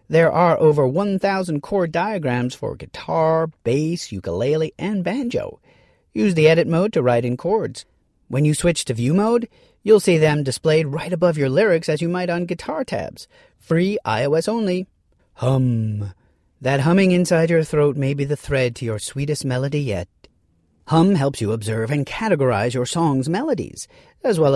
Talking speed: 170 wpm